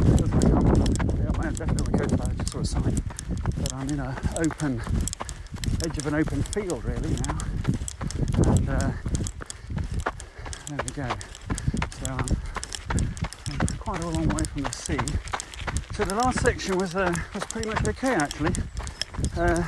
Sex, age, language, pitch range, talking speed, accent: male, 40-59, English, 95-150 Hz, 135 wpm, British